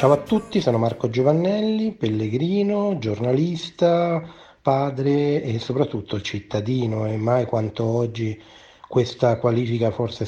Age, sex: 30-49, male